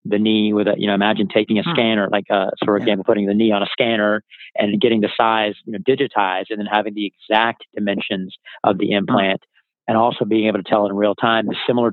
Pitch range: 105-115 Hz